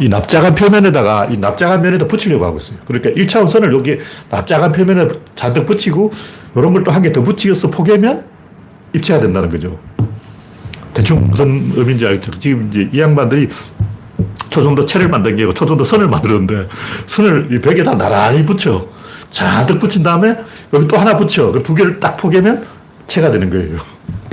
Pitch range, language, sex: 110-175 Hz, Korean, male